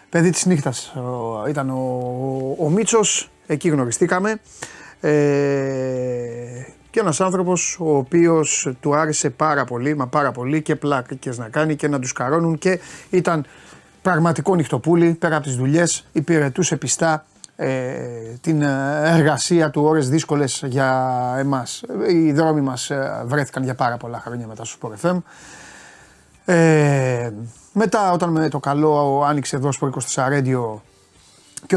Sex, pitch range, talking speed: male, 125-160 Hz, 135 wpm